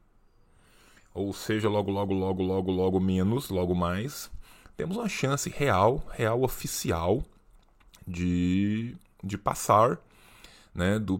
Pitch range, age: 95-110 Hz, 20-39